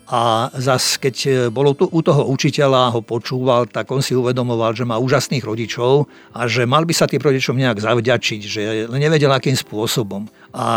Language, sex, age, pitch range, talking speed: Slovak, male, 50-69, 115-140 Hz, 180 wpm